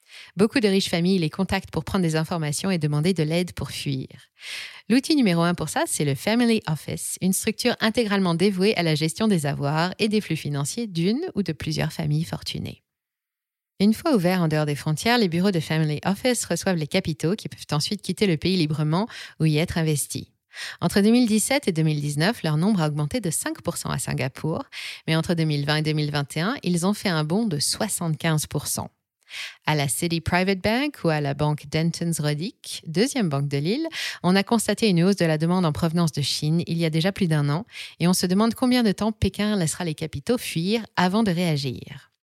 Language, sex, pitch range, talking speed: French, female, 155-210 Hz, 200 wpm